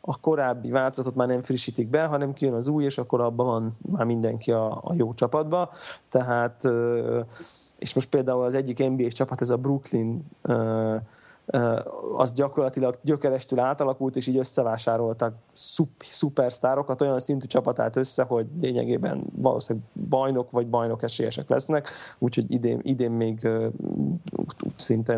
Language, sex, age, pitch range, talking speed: Hungarian, male, 30-49, 120-140 Hz, 140 wpm